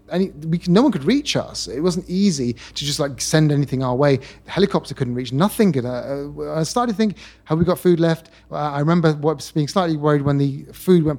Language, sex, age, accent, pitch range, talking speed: English, male, 30-49, British, 115-155 Hz, 225 wpm